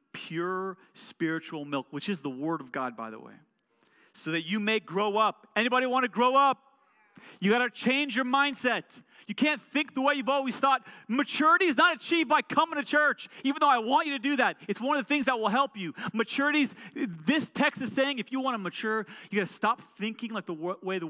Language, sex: English, male